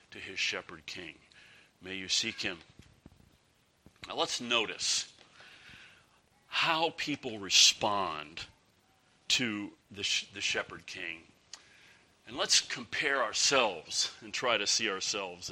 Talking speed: 110 wpm